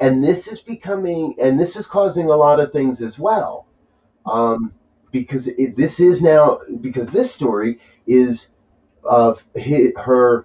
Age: 30-49